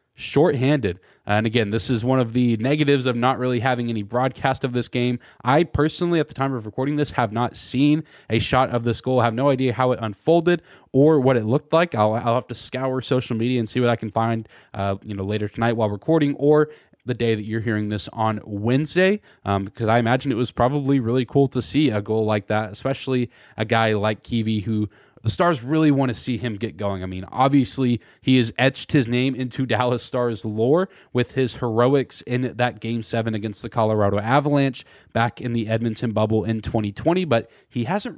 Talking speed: 215 wpm